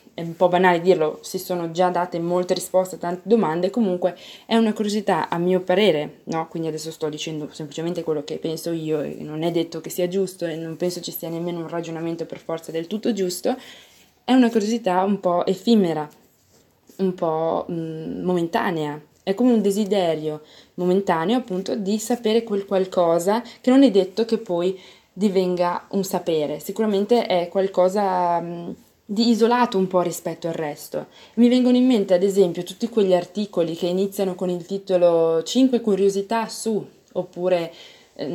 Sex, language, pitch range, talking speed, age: female, Italian, 165-200 Hz, 170 wpm, 20-39